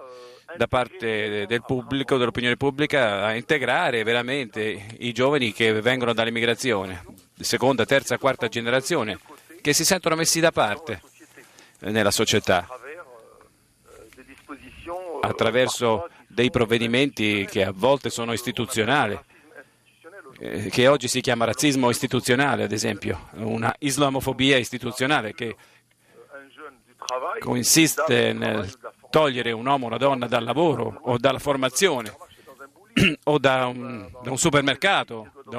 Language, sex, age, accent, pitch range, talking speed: Italian, male, 40-59, native, 115-145 Hz, 110 wpm